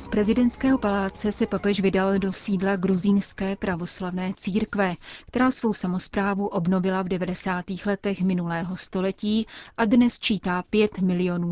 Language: Czech